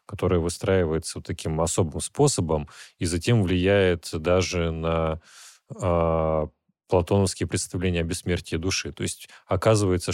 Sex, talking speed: male, 115 wpm